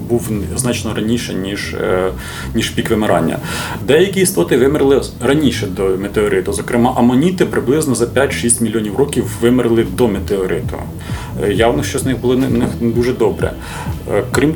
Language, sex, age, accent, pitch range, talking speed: Ukrainian, male, 30-49, native, 105-130 Hz, 135 wpm